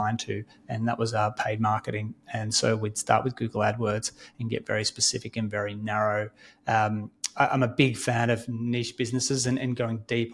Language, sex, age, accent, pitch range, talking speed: English, male, 30-49, Australian, 110-125 Hz, 195 wpm